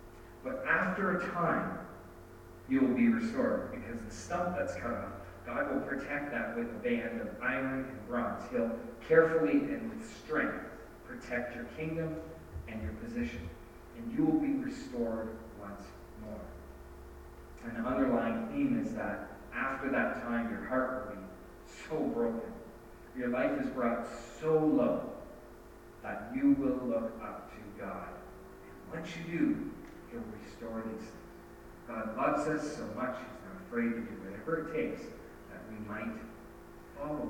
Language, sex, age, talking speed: English, male, 40-59, 150 wpm